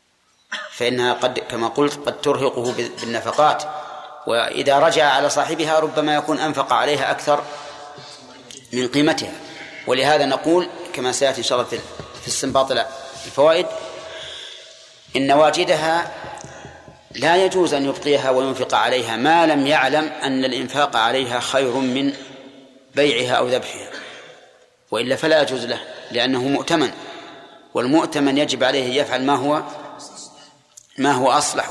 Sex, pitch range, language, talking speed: male, 130-155 Hz, Arabic, 110 wpm